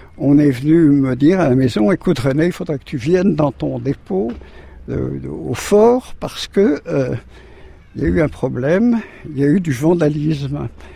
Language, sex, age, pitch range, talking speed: French, male, 60-79, 120-175 Hz, 185 wpm